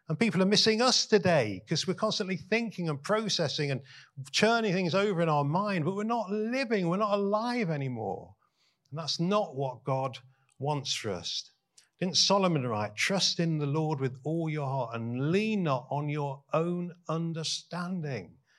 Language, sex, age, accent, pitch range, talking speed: English, male, 50-69, British, 135-190 Hz, 170 wpm